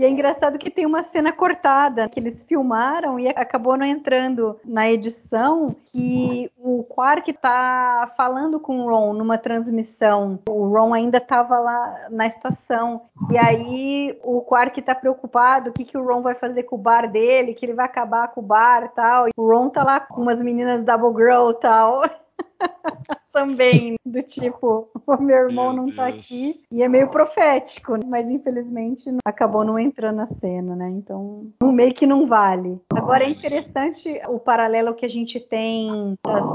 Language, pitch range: Portuguese, 225-265 Hz